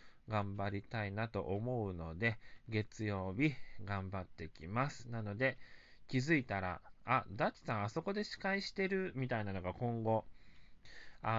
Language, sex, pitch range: Japanese, male, 100-160 Hz